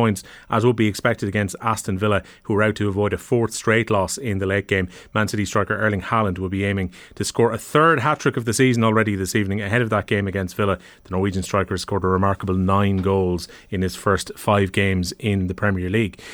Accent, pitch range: Irish, 105-130 Hz